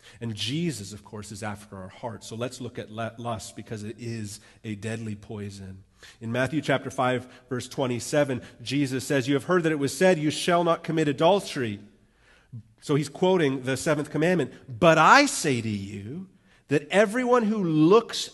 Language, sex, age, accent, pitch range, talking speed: English, male, 40-59, American, 120-170 Hz, 175 wpm